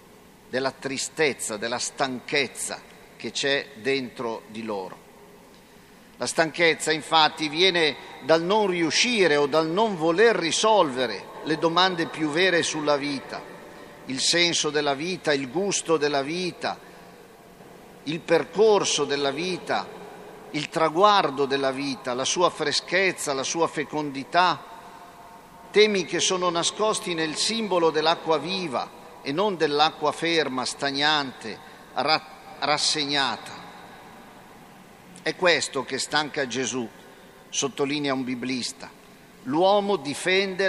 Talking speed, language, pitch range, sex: 110 wpm, Italian, 135-180 Hz, male